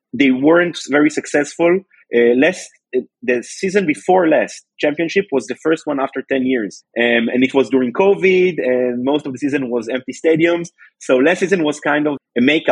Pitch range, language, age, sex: 120-160 Hz, Hebrew, 30-49, male